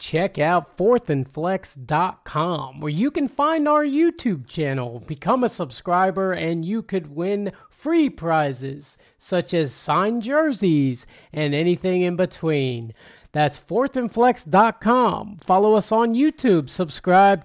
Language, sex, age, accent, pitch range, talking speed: English, male, 40-59, American, 150-235 Hz, 115 wpm